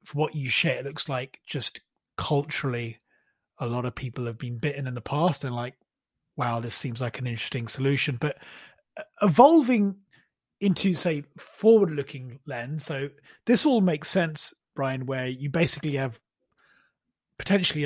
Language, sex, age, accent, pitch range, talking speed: English, male, 30-49, British, 130-165 Hz, 150 wpm